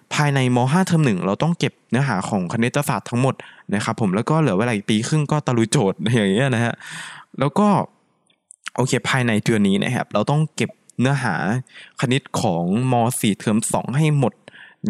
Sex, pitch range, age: male, 120-170 Hz, 20-39